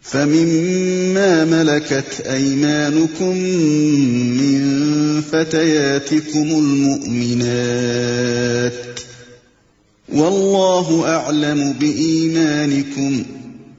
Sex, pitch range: male, 135-160 Hz